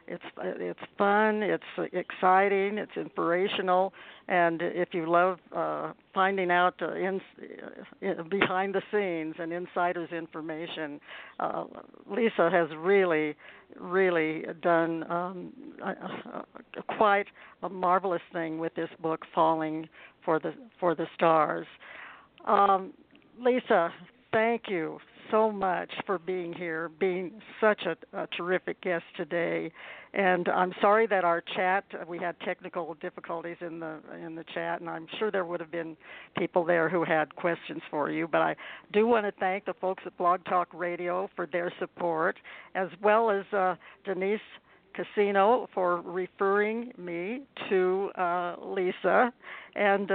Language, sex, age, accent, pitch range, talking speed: English, female, 60-79, American, 170-200 Hz, 140 wpm